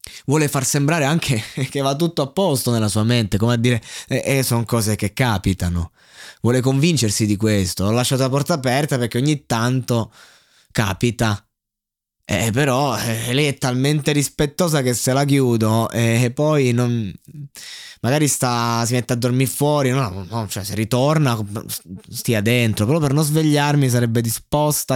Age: 20-39